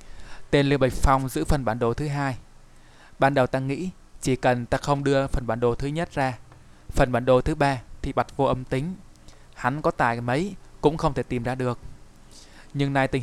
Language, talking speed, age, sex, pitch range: Vietnamese, 220 wpm, 20-39, male, 120-140 Hz